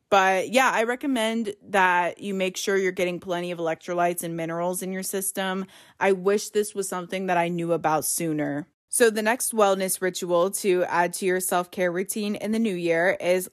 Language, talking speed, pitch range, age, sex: English, 200 wpm, 170-205 Hz, 20-39, female